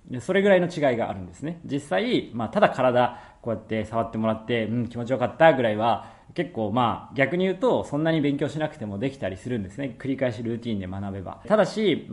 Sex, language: male, Japanese